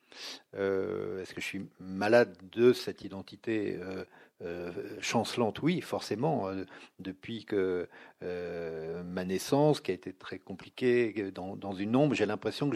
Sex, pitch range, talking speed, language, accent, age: male, 105-130 Hz, 150 wpm, French, French, 50-69